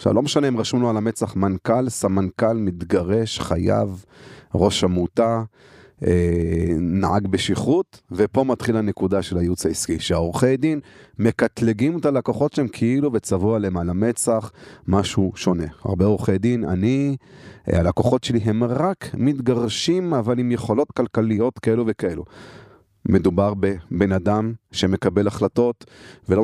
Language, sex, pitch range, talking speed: Hebrew, male, 95-120 Hz, 125 wpm